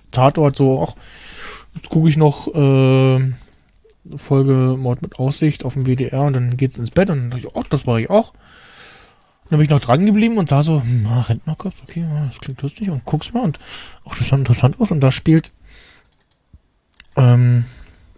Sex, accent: male, German